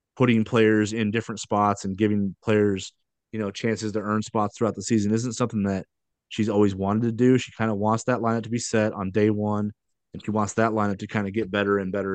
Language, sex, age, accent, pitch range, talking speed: English, male, 30-49, American, 100-115 Hz, 240 wpm